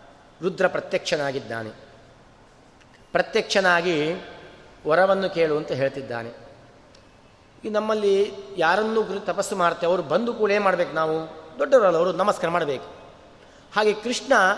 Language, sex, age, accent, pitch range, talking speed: Kannada, male, 30-49, native, 145-210 Hz, 95 wpm